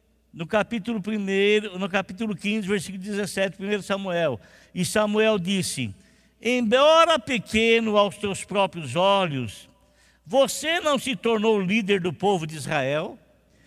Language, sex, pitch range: Portuguese, male, 170-260 Hz